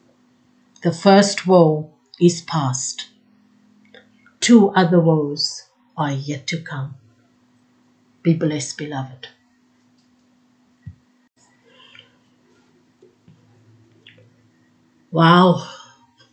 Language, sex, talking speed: English, female, 60 wpm